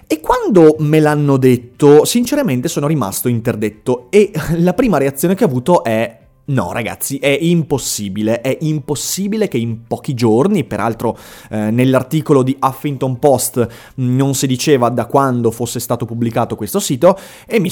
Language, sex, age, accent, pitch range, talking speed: Italian, male, 30-49, native, 125-185 Hz, 150 wpm